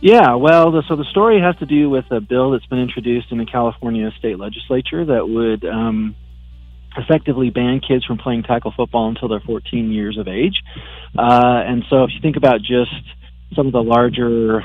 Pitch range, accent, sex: 110-130 Hz, American, male